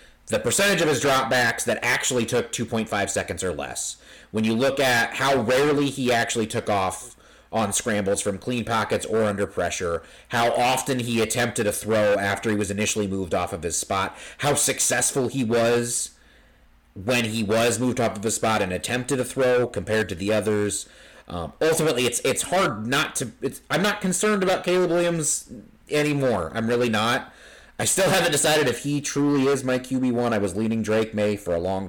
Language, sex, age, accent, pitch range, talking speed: English, male, 30-49, American, 100-135 Hz, 190 wpm